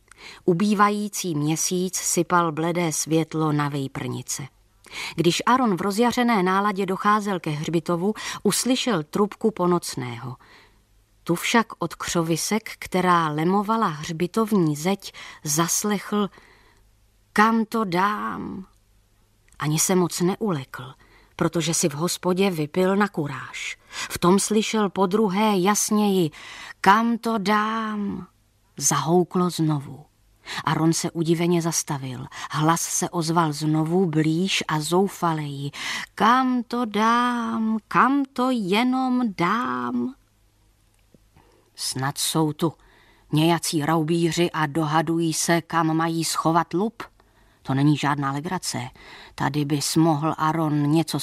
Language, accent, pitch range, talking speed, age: Czech, native, 150-200 Hz, 105 wpm, 30-49